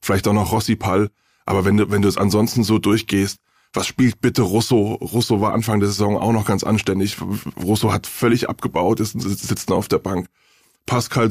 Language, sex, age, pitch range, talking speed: German, male, 20-39, 100-120 Hz, 200 wpm